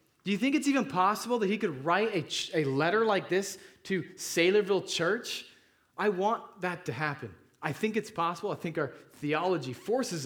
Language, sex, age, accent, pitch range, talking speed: English, male, 30-49, American, 115-170 Hz, 195 wpm